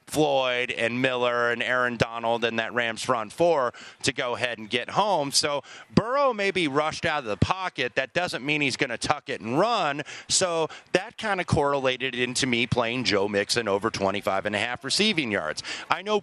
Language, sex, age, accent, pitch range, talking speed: English, male, 30-49, American, 110-150 Hz, 205 wpm